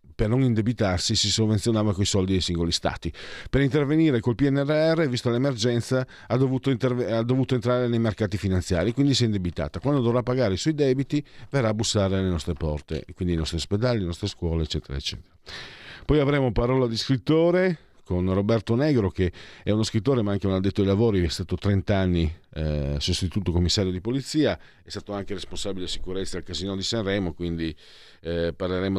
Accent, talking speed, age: native, 185 wpm, 50-69